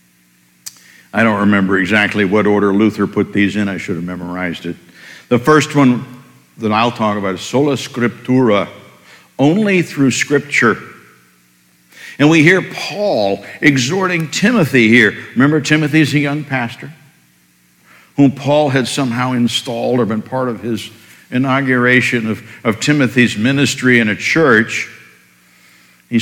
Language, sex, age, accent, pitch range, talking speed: English, male, 60-79, American, 100-135 Hz, 135 wpm